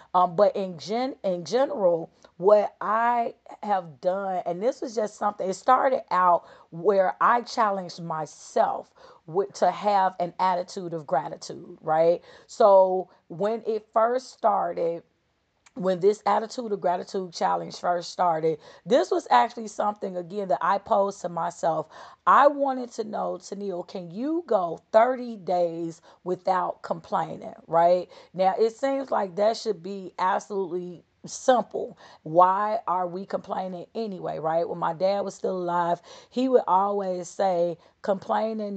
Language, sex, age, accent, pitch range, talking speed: English, female, 40-59, American, 175-215 Hz, 140 wpm